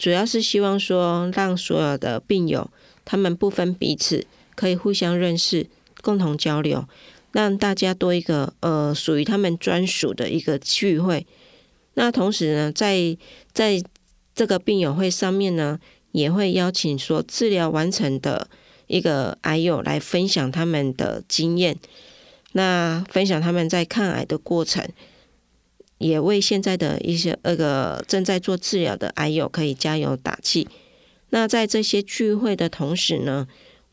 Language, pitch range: Chinese, 160-195 Hz